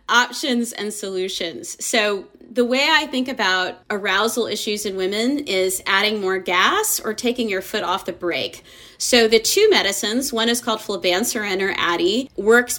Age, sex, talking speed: 30-49, female, 165 wpm